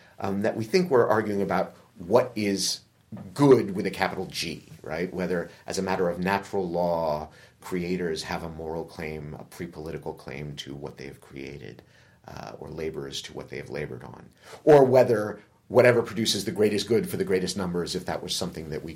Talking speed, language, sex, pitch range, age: 195 wpm, English, male, 85-120 Hz, 40-59